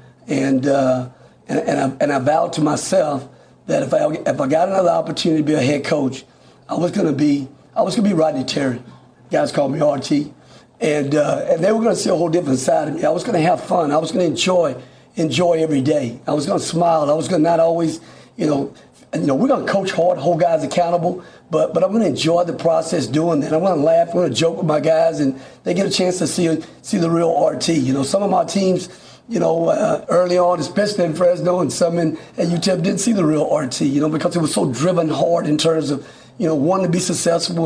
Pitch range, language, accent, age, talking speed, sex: 140-170 Hz, English, American, 50-69, 260 wpm, male